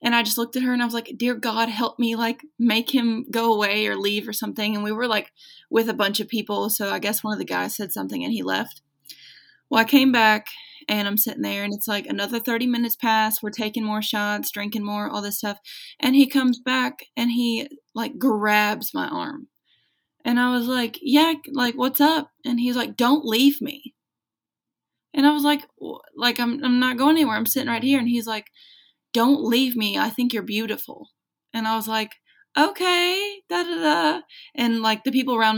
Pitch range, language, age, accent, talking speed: 210-250 Hz, English, 20-39, American, 220 wpm